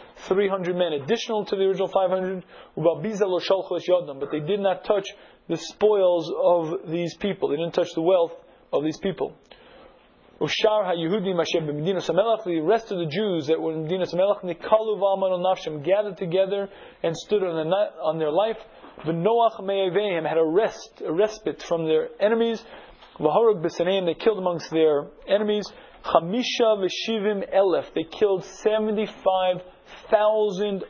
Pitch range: 170-210 Hz